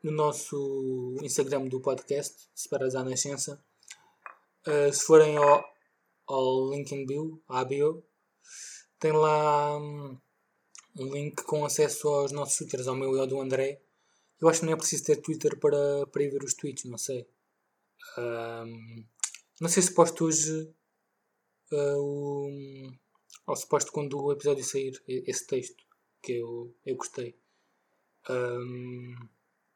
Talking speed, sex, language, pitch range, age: 135 wpm, male, Portuguese, 135-155 Hz, 20-39